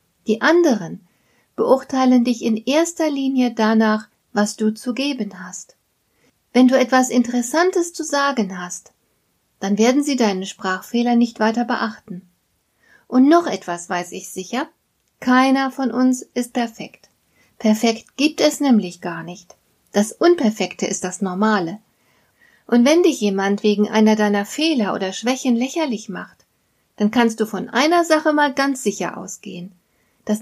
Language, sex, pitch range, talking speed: German, female, 205-255 Hz, 145 wpm